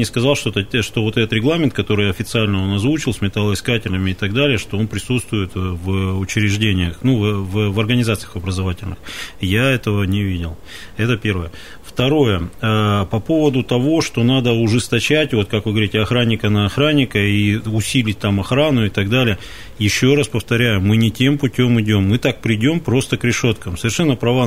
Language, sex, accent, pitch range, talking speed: Russian, male, native, 105-130 Hz, 170 wpm